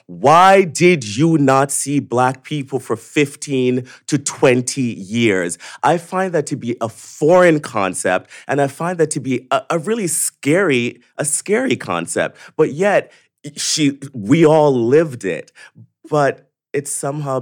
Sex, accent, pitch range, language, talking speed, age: male, American, 110-150 Hz, English, 150 wpm, 30-49